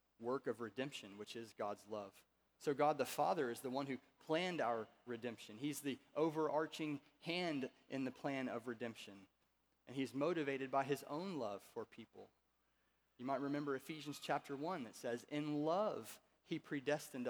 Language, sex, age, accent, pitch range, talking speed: English, male, 30-49, American, 120-145 Hz, 165 wpm